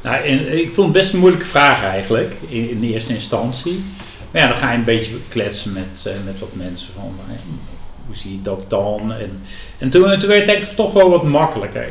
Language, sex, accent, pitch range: English, male, Dutch, 110-145 Hz